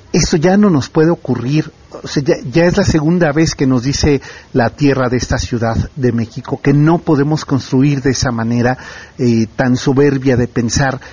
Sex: male